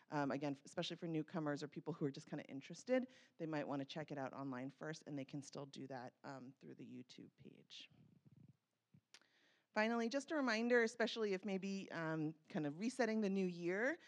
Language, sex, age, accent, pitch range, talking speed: English, female, 30-49, American, 150-190 Hz, 200 wpm